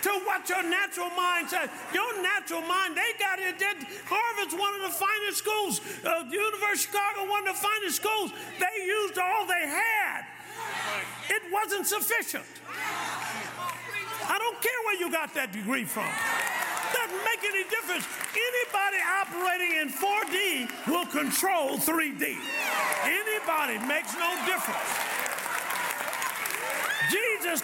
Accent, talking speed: American, 130 wpm